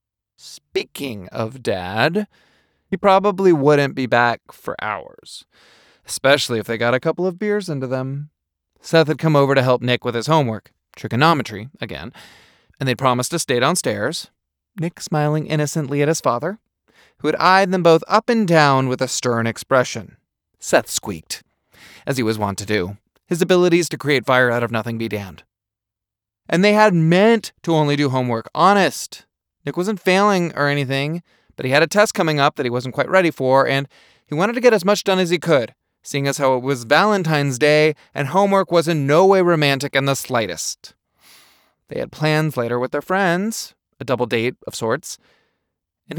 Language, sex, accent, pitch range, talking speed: English, male, American, 125-180 Hz, 185 wpm